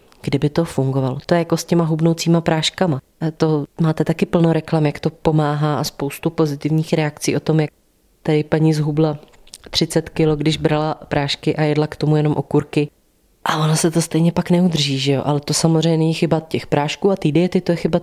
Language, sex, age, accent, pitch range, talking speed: Czech, female, 20-39, native, 145-165 Hz, 205 wpm